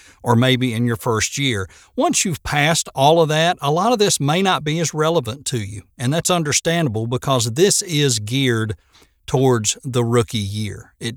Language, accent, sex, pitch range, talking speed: English, American, male, 110-140 Hz, 190 wpm